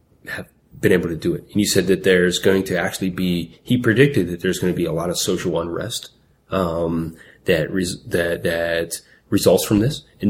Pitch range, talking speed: 85-95 Hz, 205 wpm